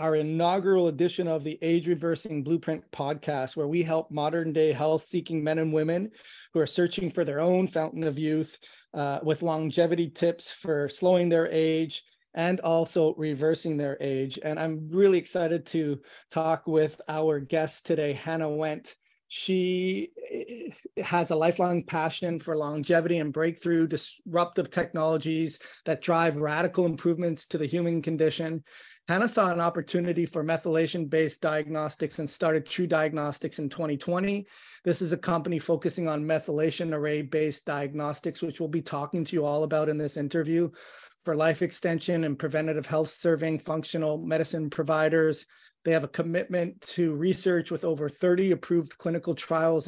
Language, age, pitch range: English, 30-49, 155-170 Hz